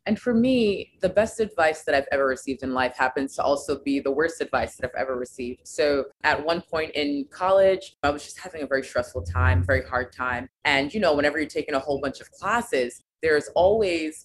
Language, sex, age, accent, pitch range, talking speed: English, female, 20-39, American, 135-165 Hz, 225 wpm